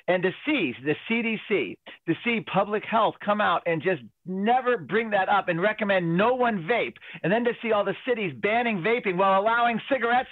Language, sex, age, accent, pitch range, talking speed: English, male, 40-59, American, 155-215 Hz, 200 wpm